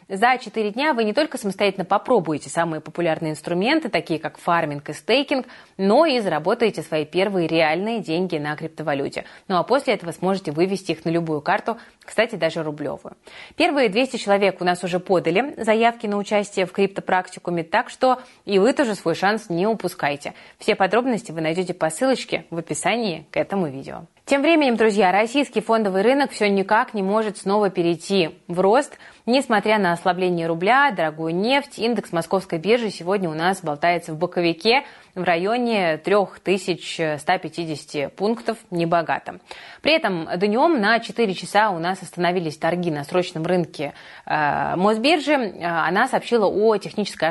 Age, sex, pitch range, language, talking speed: 20-39, female, 170-220 Hz, Russian, 155 wpm